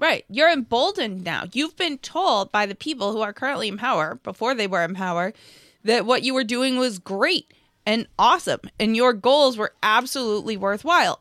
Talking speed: 185 wpm